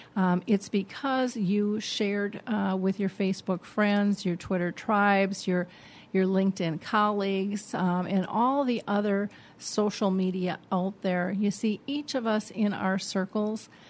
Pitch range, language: 190-215 Hz, English